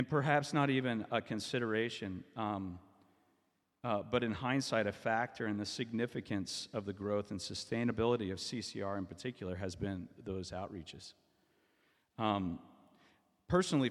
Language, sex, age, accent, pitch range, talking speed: English, male, 40-59, American, 95-115 Hz, 135 wpm